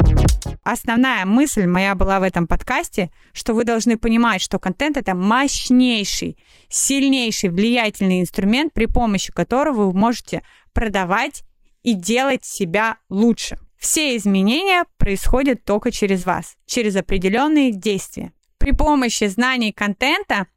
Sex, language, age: female, Russian, 20-39